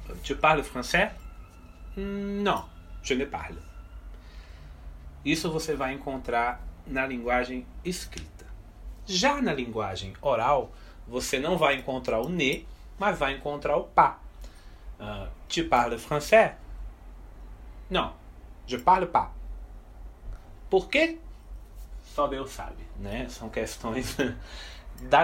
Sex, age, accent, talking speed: male, 30-49, Brazilian, 110 wpm